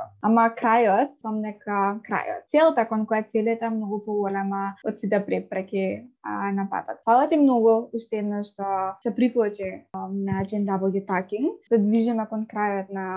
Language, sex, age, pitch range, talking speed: English, female, 20-39, 210-245 Hz, 175 wpm